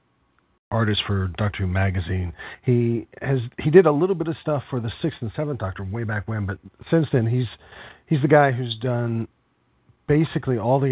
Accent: American